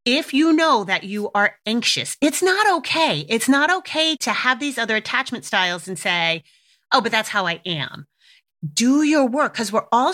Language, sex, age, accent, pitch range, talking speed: English, female, 30-49, American, 180-235 Hz, 195 wpm